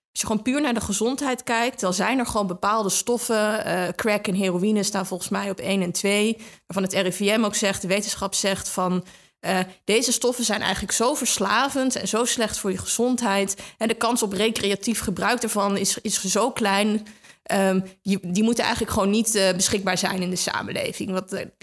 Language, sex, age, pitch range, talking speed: Dutch, female, 20-39, 190-230 Hz, 205 wpm